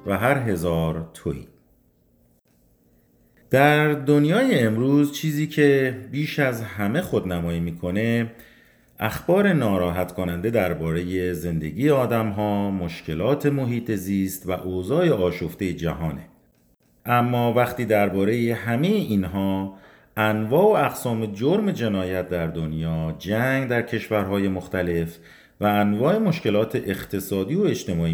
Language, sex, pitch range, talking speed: Persian, male, 90-130 Hz, 110 wpm